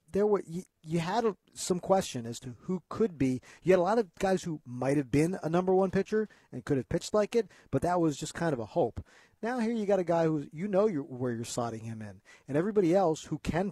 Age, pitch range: 50-69, 125-175 Hz